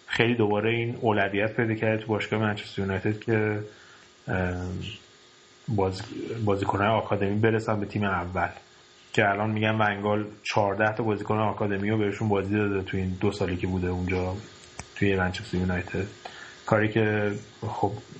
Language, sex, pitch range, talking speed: Persian, male, 100-115 Hz, 140 wpm